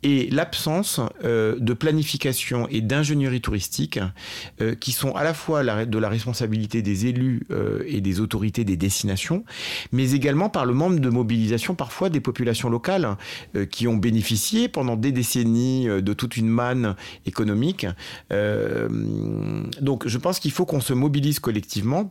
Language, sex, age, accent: French, male, 40-59, French